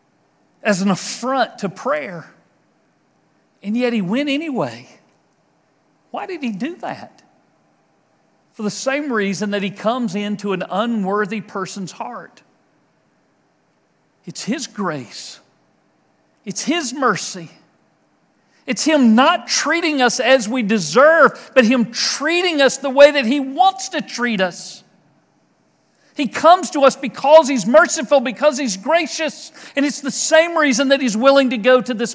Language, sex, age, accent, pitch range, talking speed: English, male, 50-69, American, 210-280 Hz, 140 wpm